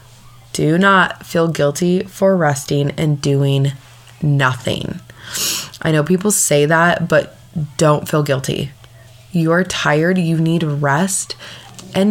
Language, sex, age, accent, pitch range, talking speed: English, female, 20-39, American, 140-185 Hz, 130 wpm